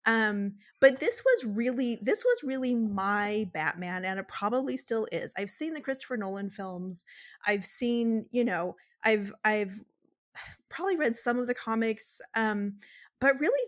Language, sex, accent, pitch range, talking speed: English, female, American, 200-245 Hz, 160 wpm